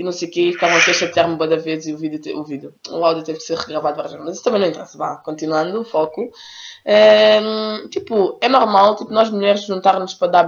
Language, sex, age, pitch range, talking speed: Portuguese, female, 20-39, 180-250 Hz, 265 wpm